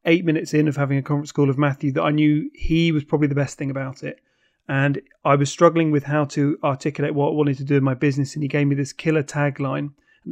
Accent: British